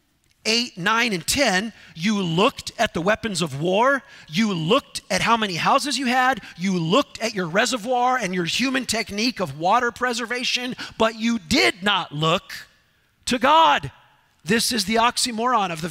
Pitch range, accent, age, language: 170-250 Hz, American, 40-59, English